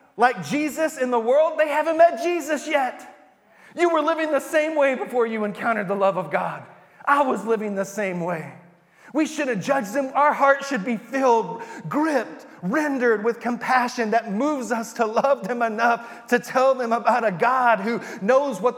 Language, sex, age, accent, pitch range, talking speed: English, male, 30-49, American, 180-250 Hz, 190 wpm